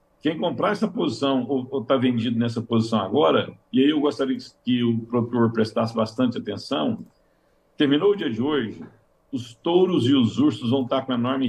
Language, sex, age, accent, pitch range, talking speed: Portuguese, male, 50-69, Brazilian, 115-145 Hz, 190 wpm